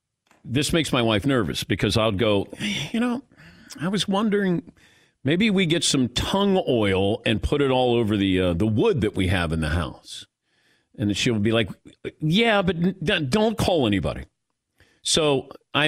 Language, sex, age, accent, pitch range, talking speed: English, male, 50-69, American, 100-155 Hz, 170 wpm